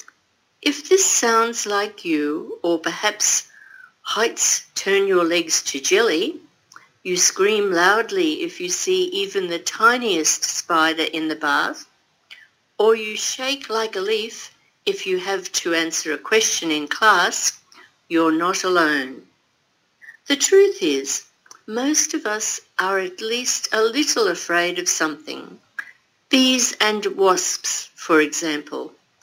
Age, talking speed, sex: 60-79, 130 wpm, female